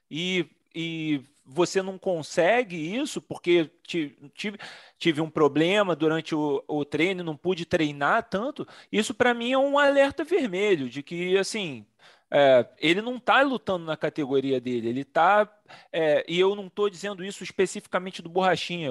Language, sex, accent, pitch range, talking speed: Portuguese, male, Brazilian, 160-235 Hz, 160 wpm